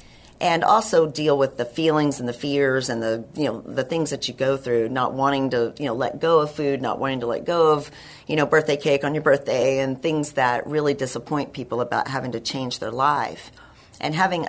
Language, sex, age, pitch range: English, female, 40-59, 125-155 Hz